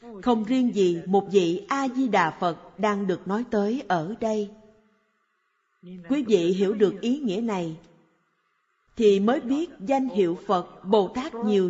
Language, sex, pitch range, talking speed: Vietnamese, female, 185-250 Hz, 145 wpm